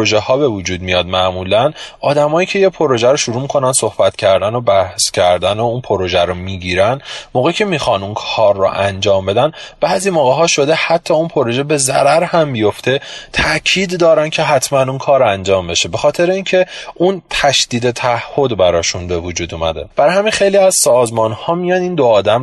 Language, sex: Persian, male